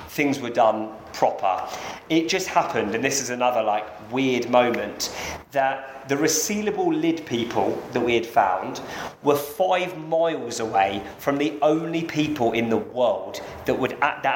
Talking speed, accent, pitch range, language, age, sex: 155 wpm, British, 120-155 Hz, English, 30-49, male